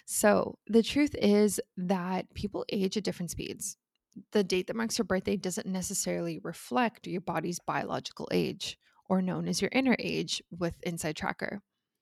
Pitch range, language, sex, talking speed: 180-215 Hz, English, female, 160 wpm